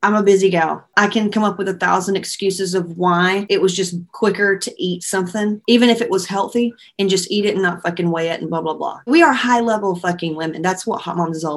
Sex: female